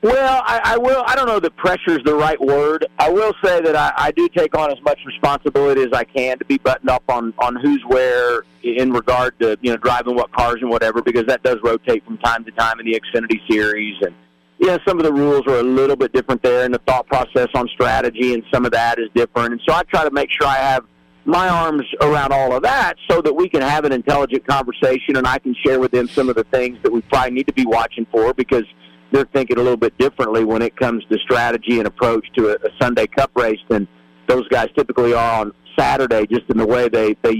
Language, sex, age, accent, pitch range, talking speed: English, male, 50-69, American, 115-145 Hz, 250 wpm